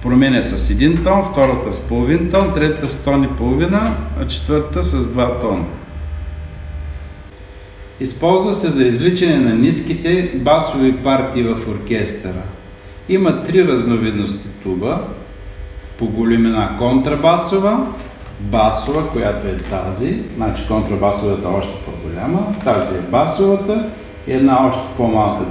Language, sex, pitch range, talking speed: Bulgarian, male, 100-145 Hz, 120 wpm